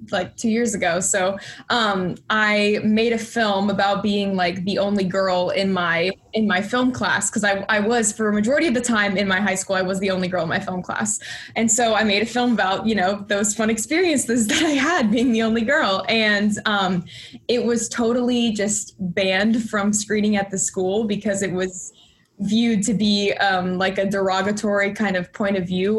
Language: English